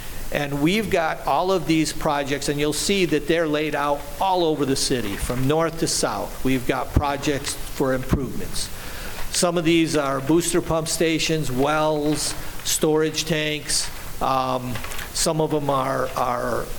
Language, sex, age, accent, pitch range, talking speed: English, male, 50-69, American, 140-160 Hz, 155 wpm